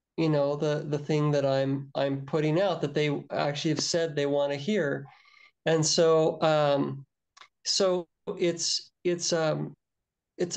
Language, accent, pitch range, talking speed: English, American, 145-170 Hz, 155 wpm